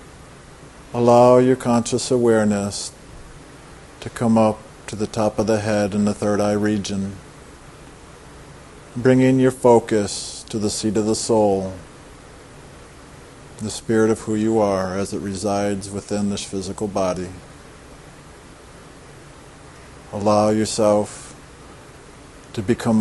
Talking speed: 115 wpm